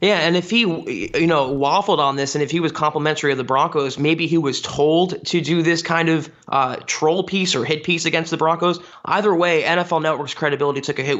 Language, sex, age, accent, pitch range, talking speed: English, male, 20-39, American, 150-180 Hz, 230 wpm